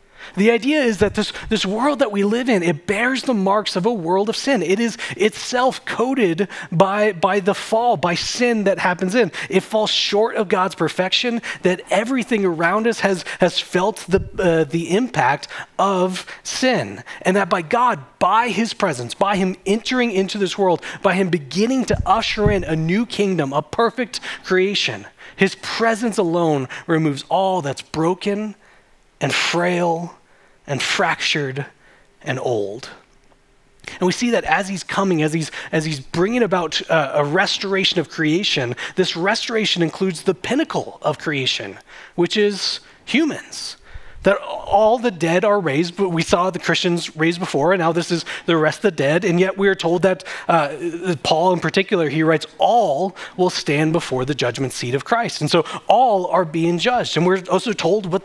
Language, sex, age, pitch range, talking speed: English, male, 30-49, 165-210 Hz, 175 wpm